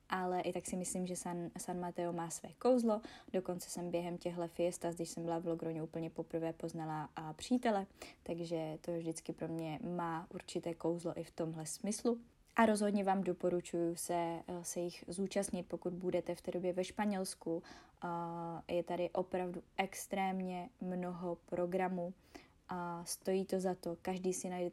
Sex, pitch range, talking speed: female, 170-185 Hz, 170 wpm